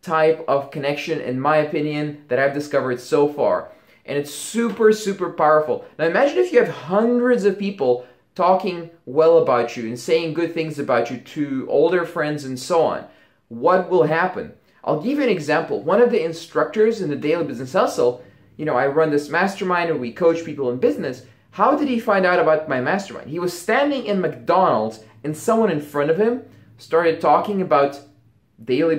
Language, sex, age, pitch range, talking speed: English, male, 20-39, 135-185 Hz, 190 wpm